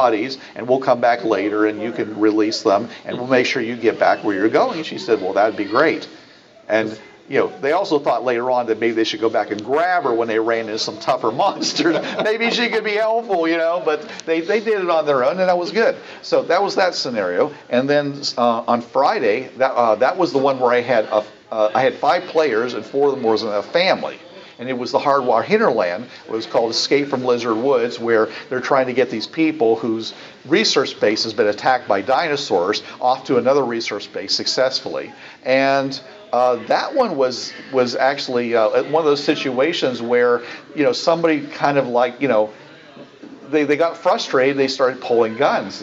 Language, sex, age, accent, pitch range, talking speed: English, male, 50-69, American, 115-150 Hz, 215 wpm